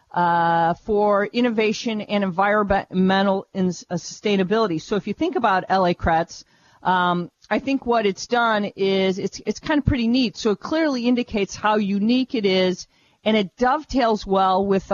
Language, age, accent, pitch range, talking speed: English, 40-59, American, 180-220 Hz, 165 wpm